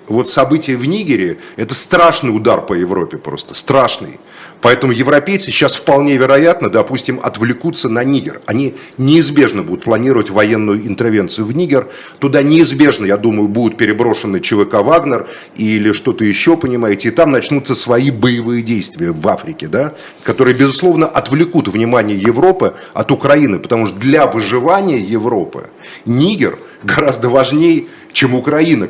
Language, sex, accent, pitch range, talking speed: Russian, male, native, 120-155 Hz, 135 wpm